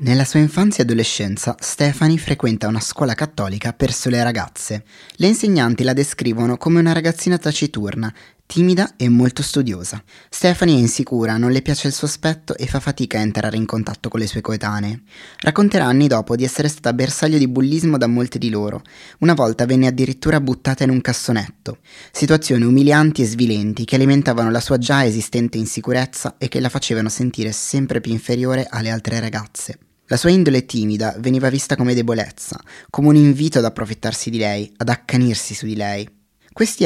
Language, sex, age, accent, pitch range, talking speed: Italian, male, 20-39, native, 115-145 Hz, 175 wpm